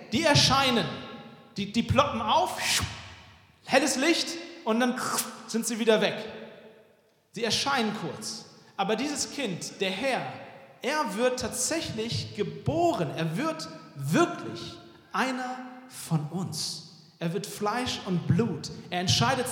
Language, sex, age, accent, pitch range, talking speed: German, male, 40-59, German, 175-245 Hz, 120 wpm